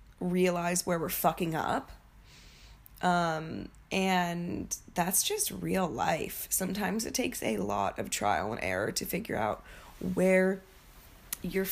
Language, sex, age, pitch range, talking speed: English, female, 20-39, 170-195 Hz, 130 wpm